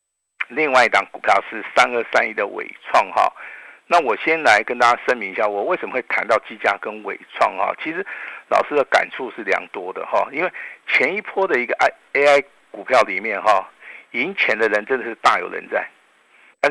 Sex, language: male, Chinese